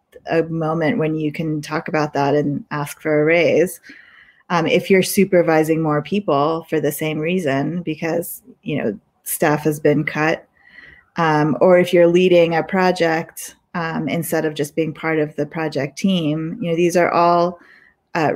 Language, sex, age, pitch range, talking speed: English, female, 20-39, 155-175 Hz, 175 wpm